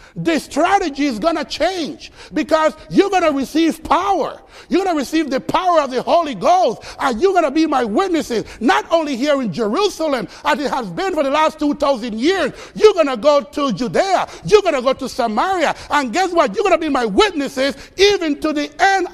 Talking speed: 215 wpm